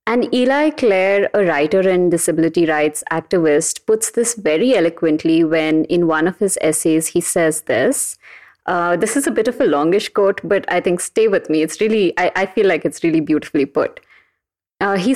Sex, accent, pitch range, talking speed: female, Indian, 175-235 Hz, 195 wpm